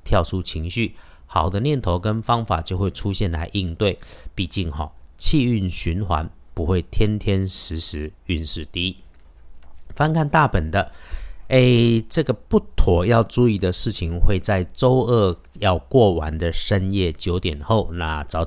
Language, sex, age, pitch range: Chinese, male, 50-69, 80-105 Hz